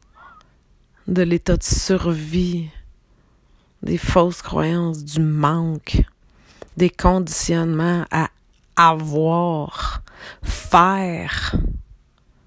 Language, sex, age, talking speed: French, female, 30-49, 65 wpm